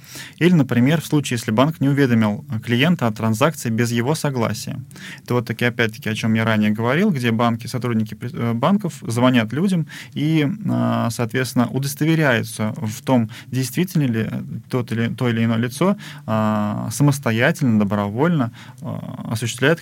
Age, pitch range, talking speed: 20-39, 110-145 Hz, 125 wpm